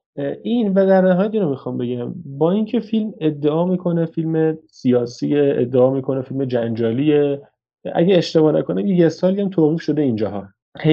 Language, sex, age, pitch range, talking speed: Persian, male, 30-49, 125-155 Hz, 160 wpm